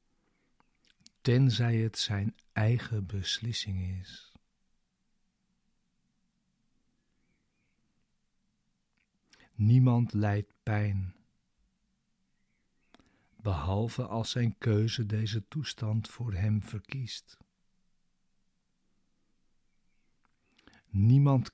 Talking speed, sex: 55 wpm, male